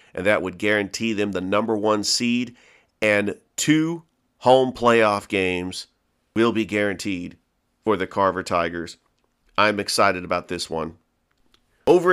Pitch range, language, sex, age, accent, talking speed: 95-115 Hz, English, male, 40-59, American, 135 wpm